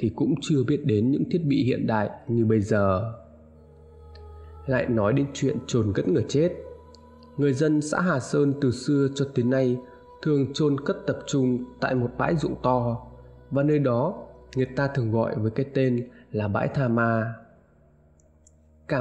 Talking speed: 175 wpm